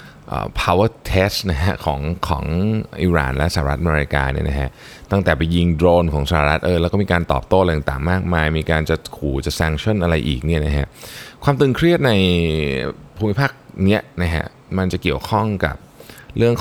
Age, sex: 20-39, male